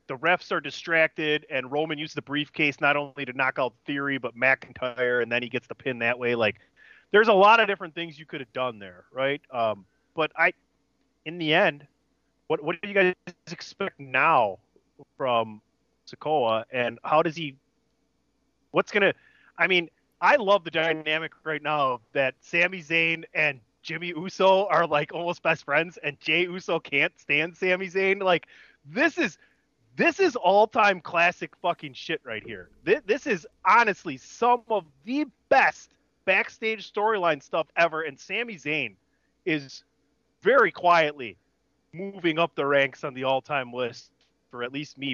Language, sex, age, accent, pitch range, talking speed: English, male, 30-49, American, 140-190 Hz, 165 wpm